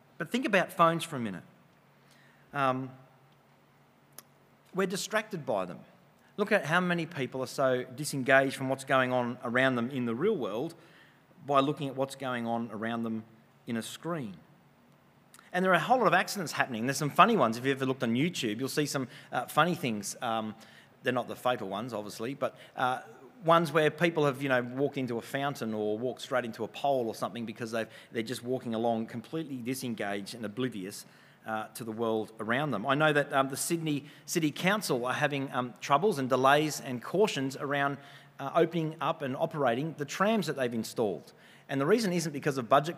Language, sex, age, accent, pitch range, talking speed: English, male, 30-49, Australian, 120-155 Hz, 200 wpm